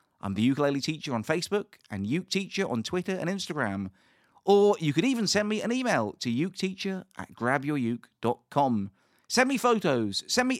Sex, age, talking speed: male, 40-59, 170 wpm